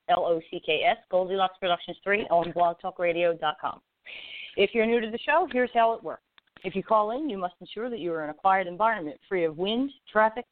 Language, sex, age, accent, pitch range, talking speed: English, female, 40-59, American, 170-230 Hz, 195 wpm